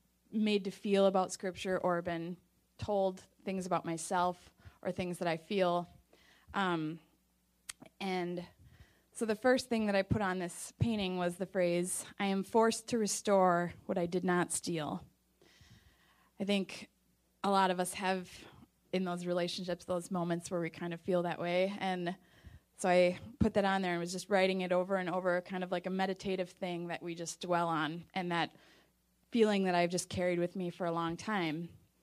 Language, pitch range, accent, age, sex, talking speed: English, 175-195 Hz, American, 20-39, female, 185 wpm